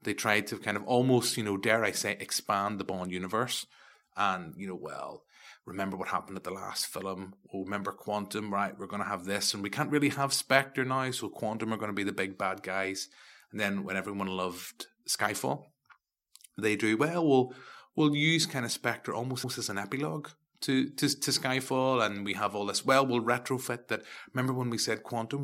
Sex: male